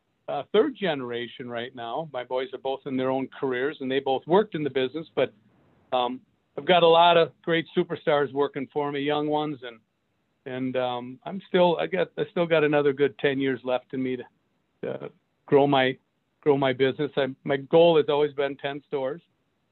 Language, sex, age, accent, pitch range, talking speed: English, male, 50-69, American, 120-150 Hz, 200 wpm